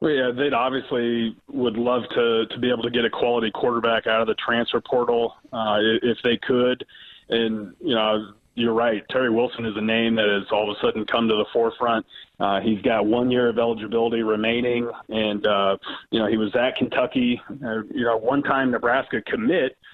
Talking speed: 200 wpm